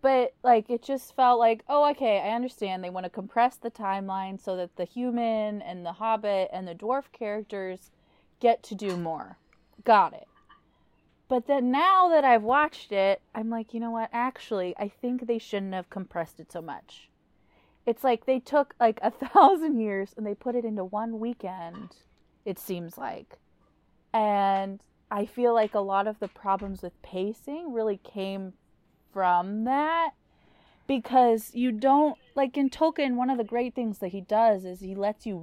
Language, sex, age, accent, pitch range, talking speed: English, female, 20-39, American, 195-245 Hz, 180 wpm